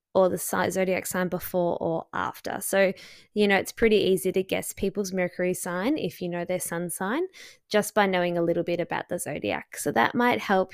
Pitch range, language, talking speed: 180-230 Hz, English, 205 wpm